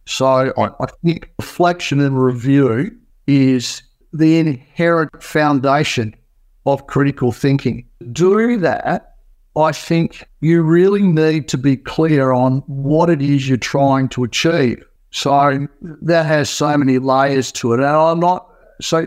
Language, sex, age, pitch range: English, male, 60-79, 135-170 Hz